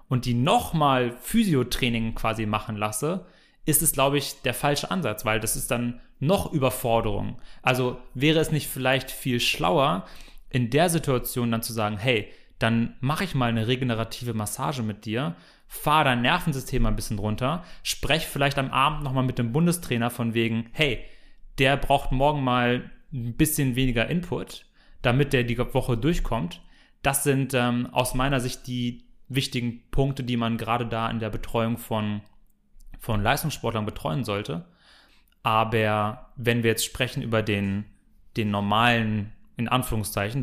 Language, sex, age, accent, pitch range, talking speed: German, male, 30-49, German, 115-145 Hz, 155 wpm